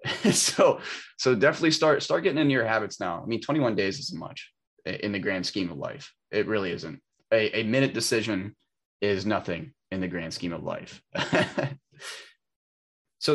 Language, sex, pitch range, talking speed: English, male, 95-120 Hz, 170 wpm